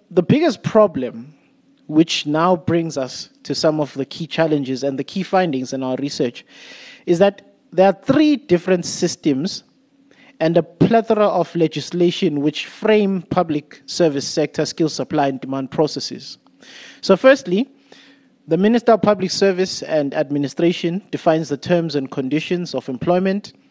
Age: 30-49